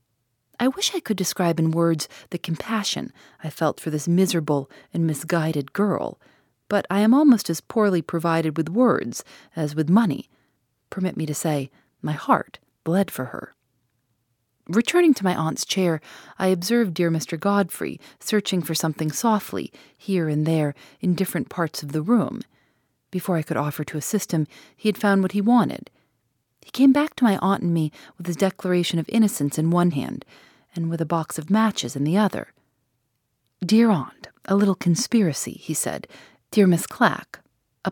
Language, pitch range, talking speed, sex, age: English, 155-200 Hz, 175 wpm, female, 30-49